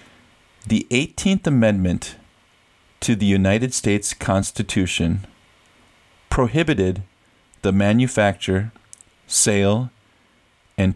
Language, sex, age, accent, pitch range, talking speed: English, male, 40-59, American, 95-115 Hz, 70 wpm